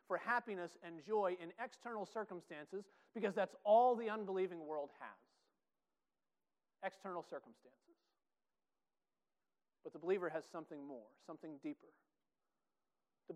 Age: 40-59